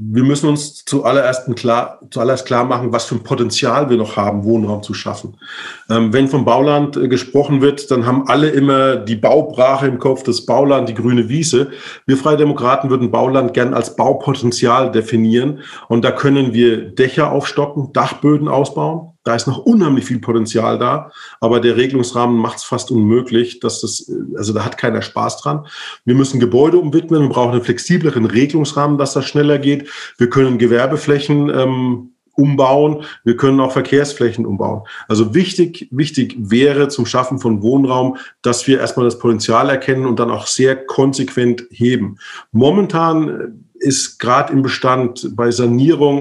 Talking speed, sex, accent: 160 wpm, male, German